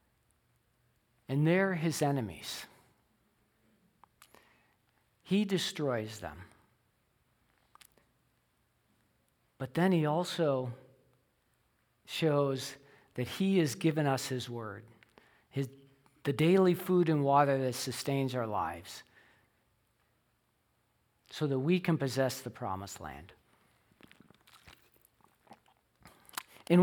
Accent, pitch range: American, 120-160 Hz